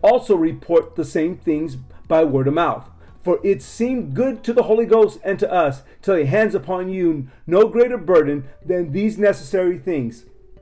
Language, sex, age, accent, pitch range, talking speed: English, male, 40-59, American, 160-220 Hz, 180 wpm